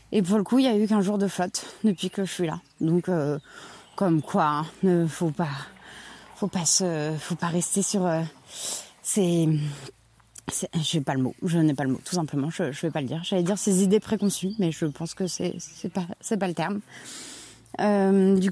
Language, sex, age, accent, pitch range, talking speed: French, female, 20-39, French, 160-200 Hz, 235 wpm